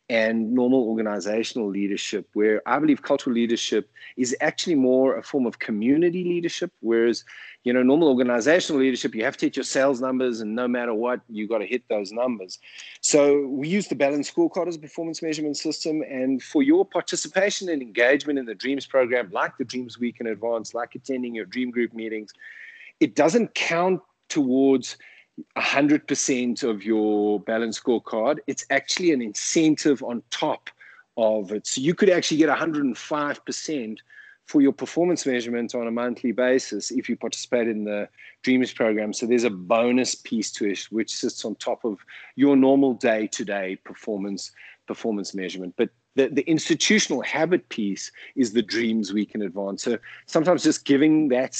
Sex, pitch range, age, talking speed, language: male, 115-150 Hz, 30-49, 170 wpm, English